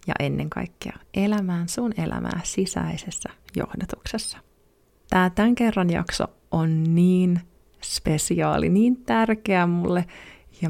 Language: Finnish